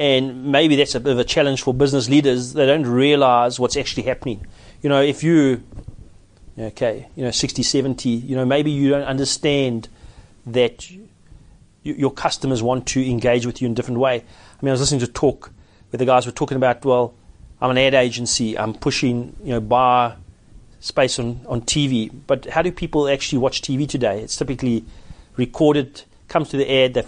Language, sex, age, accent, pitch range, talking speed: English, male, 30-49, South African, 115-140 Hz, 195 wpm